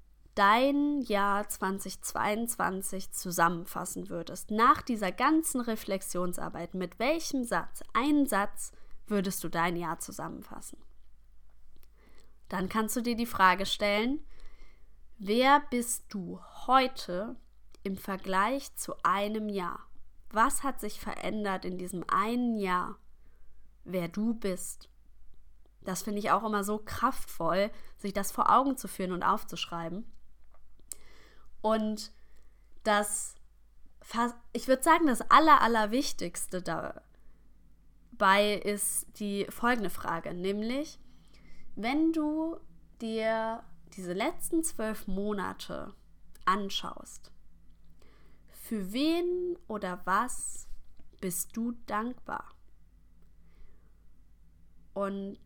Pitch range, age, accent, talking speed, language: 170-235 Hz, 20-39, German, 100 wpm, German